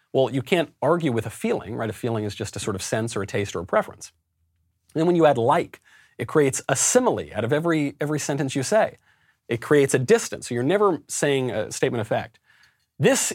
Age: 40-59